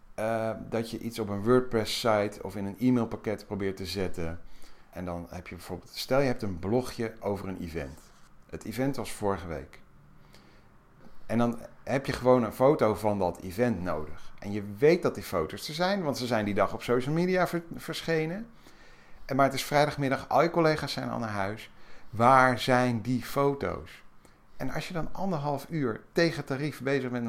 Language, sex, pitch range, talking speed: Dutch, male, 90-125 Hz, 185 wpm